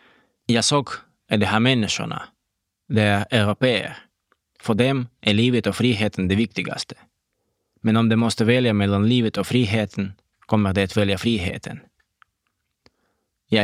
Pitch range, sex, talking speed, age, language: 95-115 Hz, male, 140 wpm, 20-39, Swedish